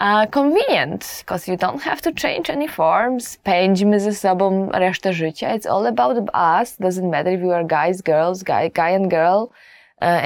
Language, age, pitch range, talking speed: English, 20-39, 170-210 Hz, 180 wpm